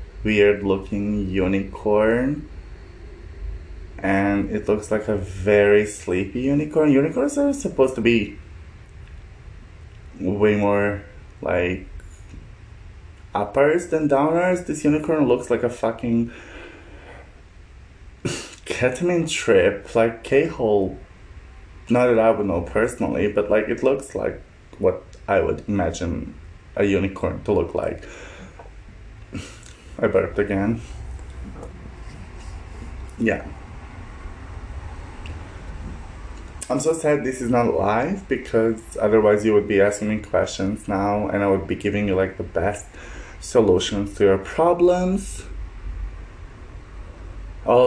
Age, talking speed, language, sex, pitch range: 20-39, 110 wpm, English, male, 85-115 Hz